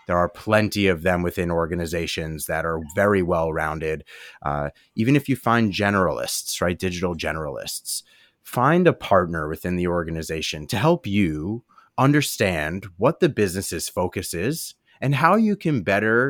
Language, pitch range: English, 85-115 Hz